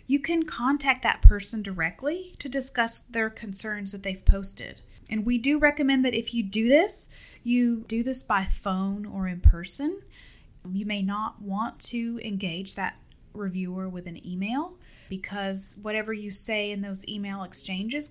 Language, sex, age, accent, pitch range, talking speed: English, female, 30-49, American, 195-245 Hz, 160 wpm